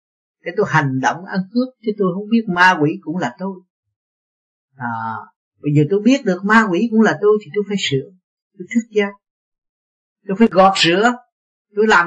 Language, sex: Vietnamese, male